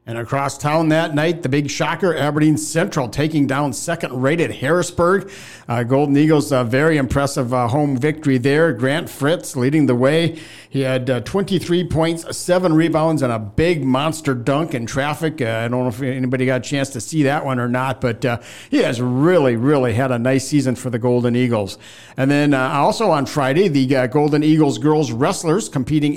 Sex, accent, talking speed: male, American, 200 wpm